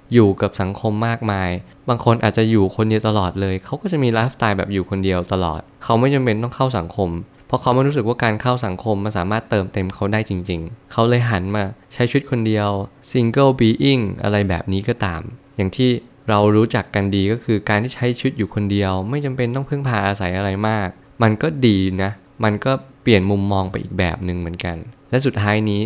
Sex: male